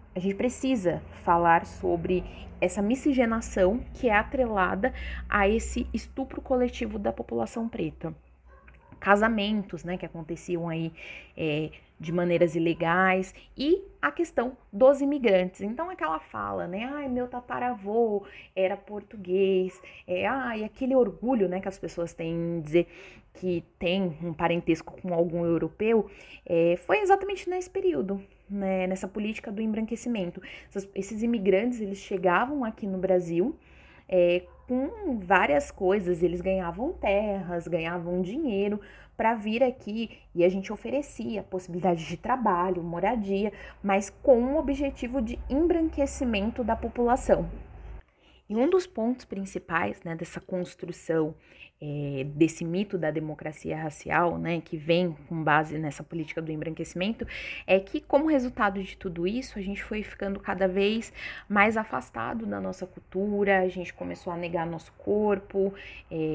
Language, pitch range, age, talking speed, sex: Portuguese, 170-230 Hz, 20-39, 135 wpm, female